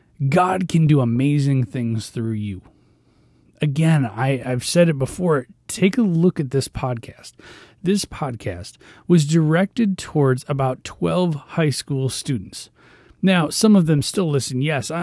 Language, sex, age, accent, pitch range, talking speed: English, male, 30-49, American, 125-165 Hz, 140 wpm